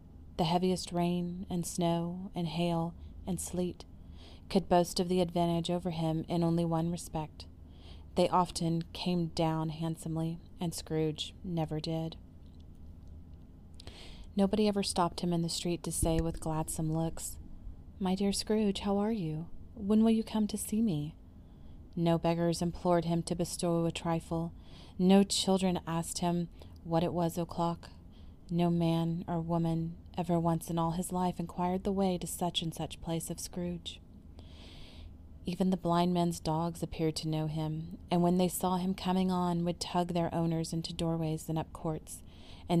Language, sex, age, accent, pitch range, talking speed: English, female, 30-49, American, 155-175 Hz, 165 wpm